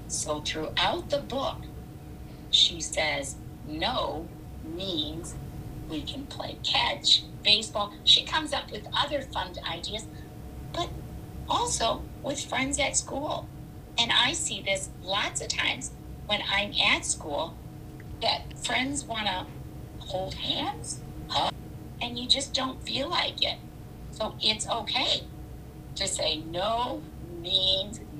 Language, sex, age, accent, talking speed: English, female, 50-69, American, 120 wpm